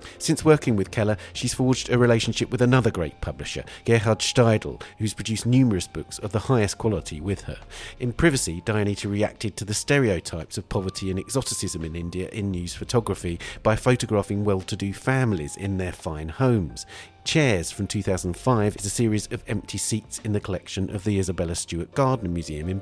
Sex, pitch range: male, 90-115 Hz